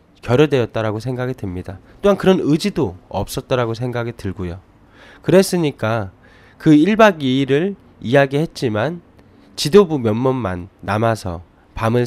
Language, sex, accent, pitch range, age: Korean, male, native, 105-160 Hz, 20-39